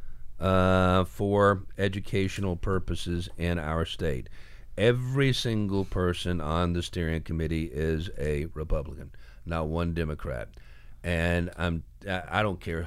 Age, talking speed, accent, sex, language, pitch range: 50-69, 120 wpm, American, male, English, 80-110 Hz